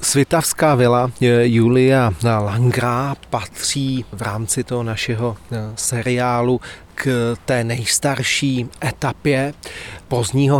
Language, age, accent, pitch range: Czech, 30-49, native, 115-135 Hz